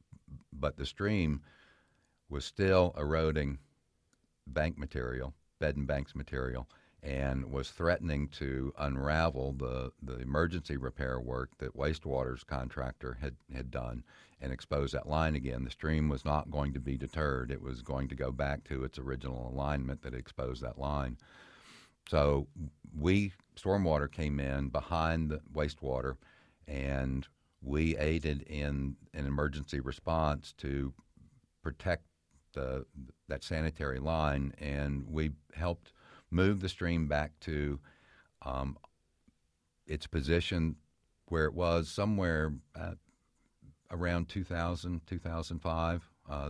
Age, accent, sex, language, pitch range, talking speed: 60-79, American, male, English, 70-80 Hz, 125 wpm